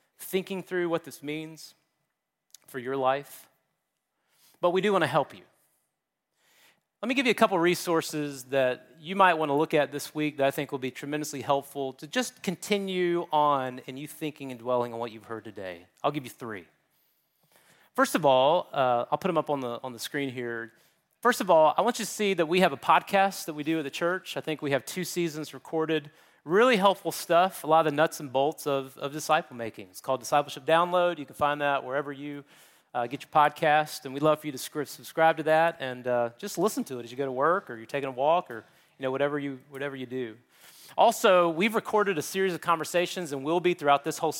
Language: English